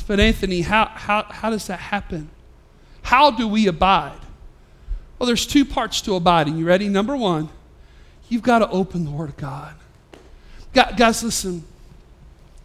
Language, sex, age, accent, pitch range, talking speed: English, male, 40-59, American, 220-310 Hz, 150 wpm